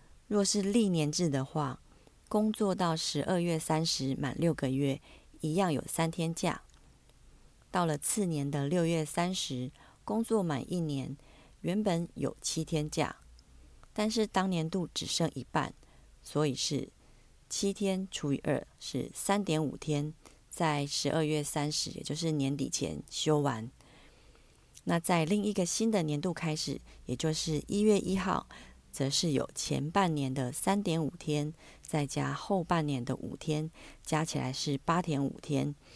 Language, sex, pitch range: Chinese, female, 140-180 Hz